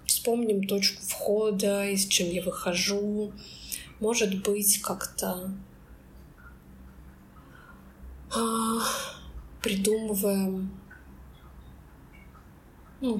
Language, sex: Russian, female